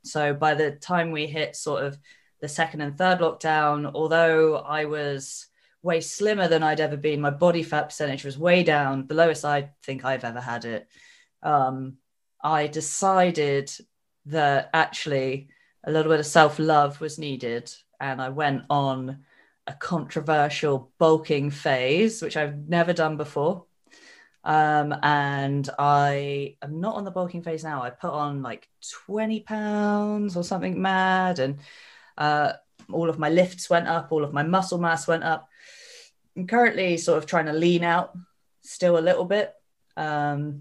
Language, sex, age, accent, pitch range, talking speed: English, female, 20-39, British, 145-175 Hz, 160 wpm